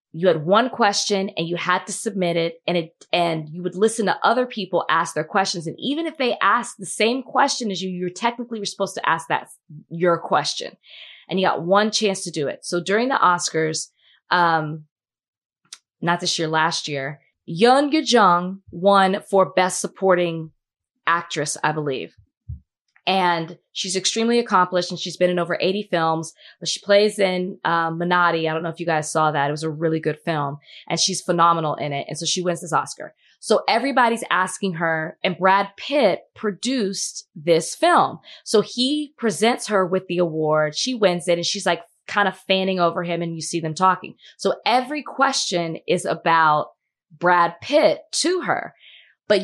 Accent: American